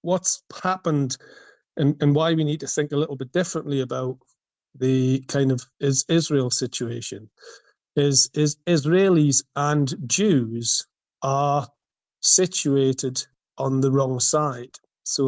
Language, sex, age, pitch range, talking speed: English, male, 40-59, 130-150 Hz, 125 wpm